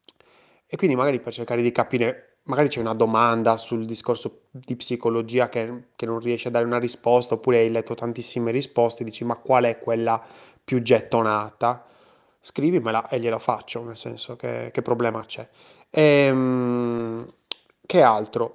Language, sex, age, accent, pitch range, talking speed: Italian, male, 20-39, native, 115-130 Hz, 155 wpm